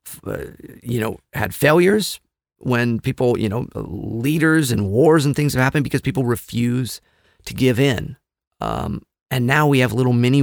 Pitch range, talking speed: 105-130 Hz, 165 wpm